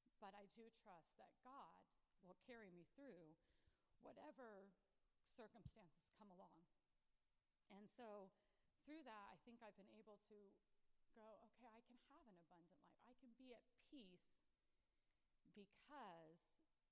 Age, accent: 40-59, American